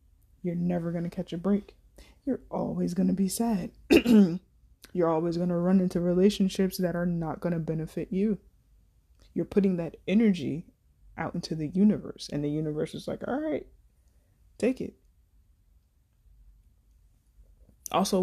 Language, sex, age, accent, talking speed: English, female, 20-39, American, 150 wpm